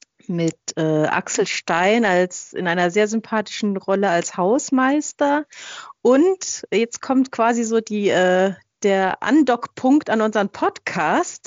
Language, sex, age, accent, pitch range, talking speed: German, female, 30-49, German, 195-255 Hz, 125 wpm